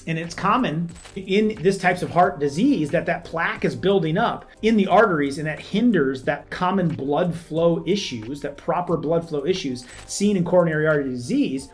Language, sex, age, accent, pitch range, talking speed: English, male, 30-49, American, 150-195 Hz, 185 wpm